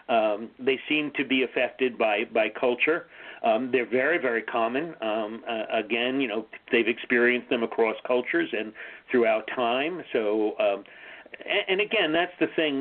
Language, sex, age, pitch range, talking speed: English, male, 40-59, 115-140 Hz, 165 wpm